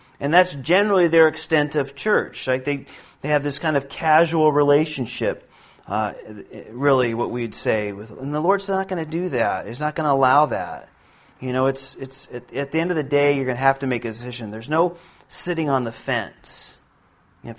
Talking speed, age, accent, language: 220 wpm, 30-49, American, Finnish